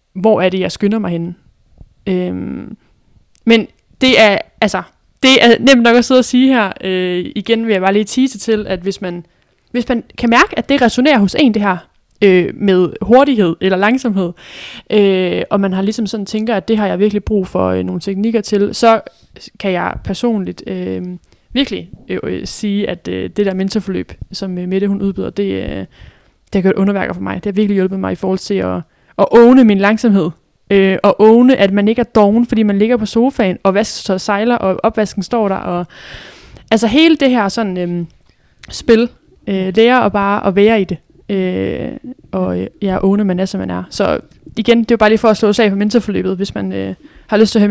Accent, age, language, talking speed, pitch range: native, 20-39, Danish, 215 wpm, 185-225 Hz